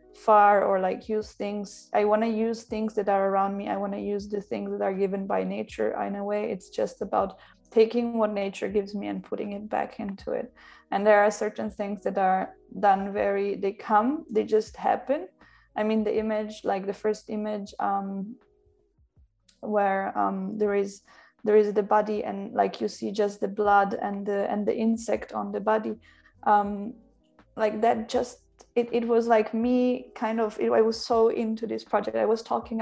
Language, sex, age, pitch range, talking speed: English, female, 20-39, 200-225 Hz, 200 wpm